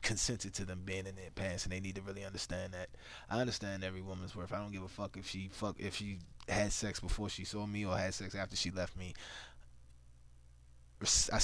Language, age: English, 20-39